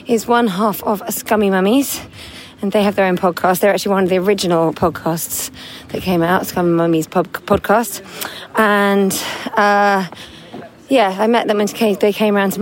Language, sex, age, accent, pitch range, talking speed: English, female, 30-49, British, 175-205 Hz, 180 wpm